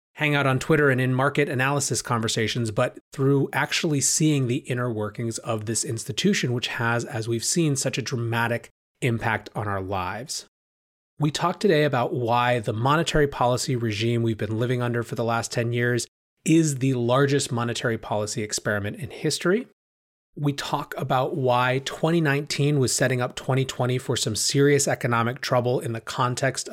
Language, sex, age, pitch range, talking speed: English, male, 30-49, 115-145 Hz, 165 wpm